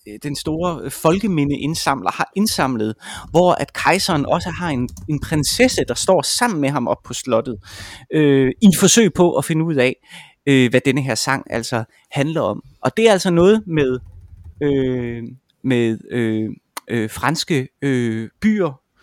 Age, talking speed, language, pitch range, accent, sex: 30-49, 160 wpm, Danish, 120-165 Hz, native, male